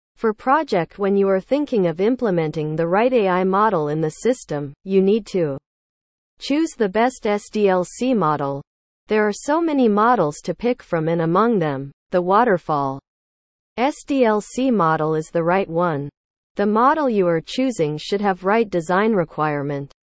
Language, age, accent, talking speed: English, 40-59, American, 155 wpm